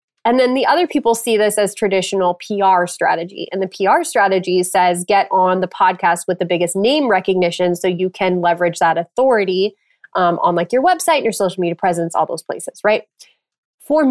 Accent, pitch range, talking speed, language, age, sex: American, 190-265 Hz, 190 wpm, English, 20-39, female